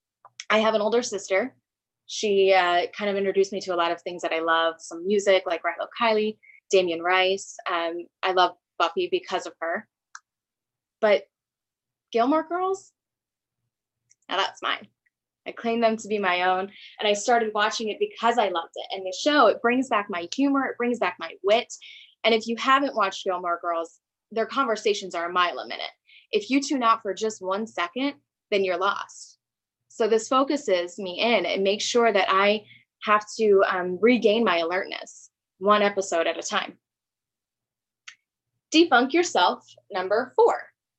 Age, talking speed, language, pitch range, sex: 20-39, 175 wpm, English, 175-225 Hz, female